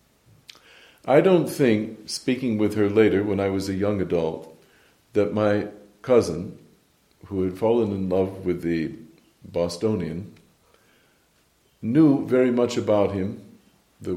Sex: male